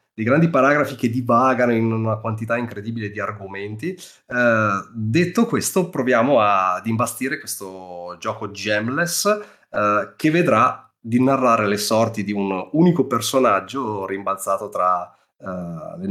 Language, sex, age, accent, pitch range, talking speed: Italian, male, 30-49, native, 100-130 Hz, 125 wpm